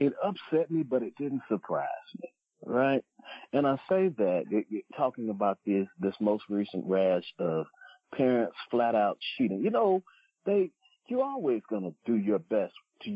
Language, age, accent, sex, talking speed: English, 40-59, American, male, 170 wpm